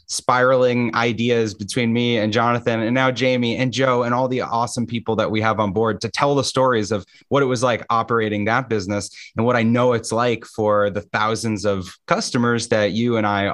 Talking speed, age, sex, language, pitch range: 215 wpm, 30-49, male, English, 105-130 Hz